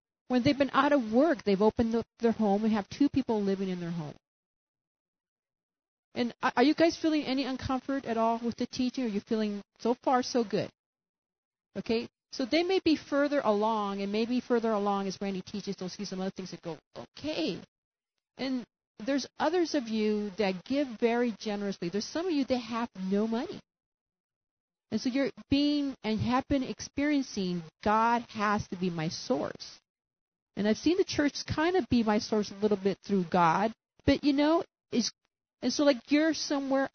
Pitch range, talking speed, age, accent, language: 200-275 Hz, 190 wpm, 40-59, American, English